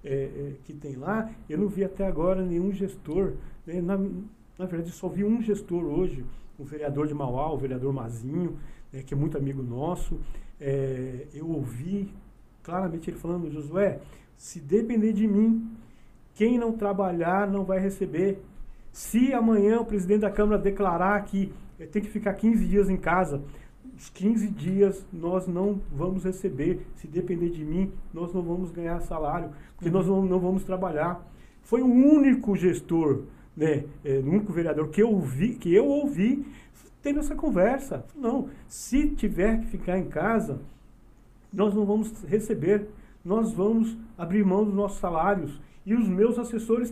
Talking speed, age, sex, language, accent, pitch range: 155 wpm, 40-59, male, Portuguese, Brazilian, 165-215 Hz